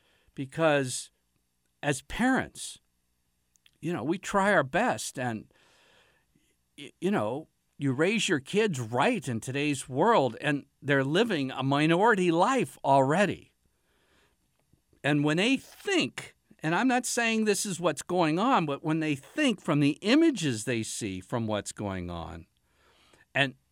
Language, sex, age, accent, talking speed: English, male, 50-69, American, 135 wpm